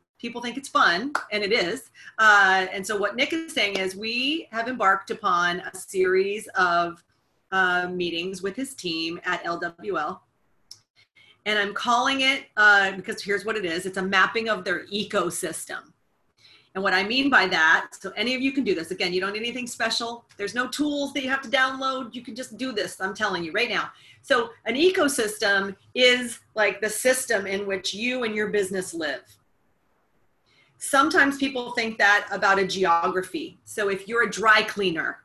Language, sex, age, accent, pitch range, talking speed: English, female, 40-59, American, 190-250 Hz, 185 wpm